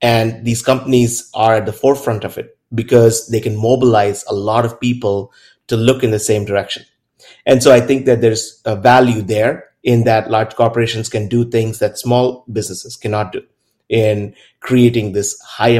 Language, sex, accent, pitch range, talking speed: English, male, Indian, 110-125 Hz, 180 wpm